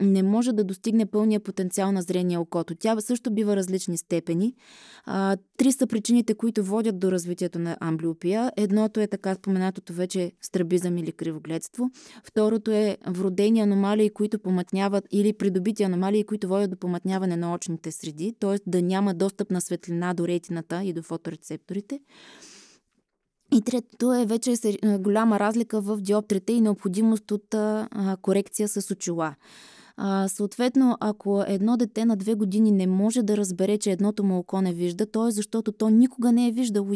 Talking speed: 160 wpm